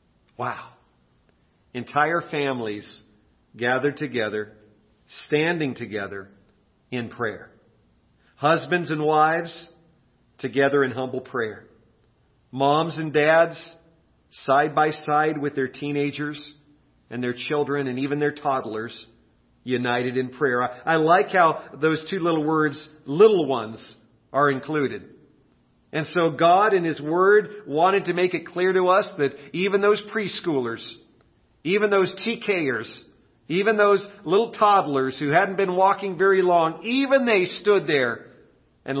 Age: 40-59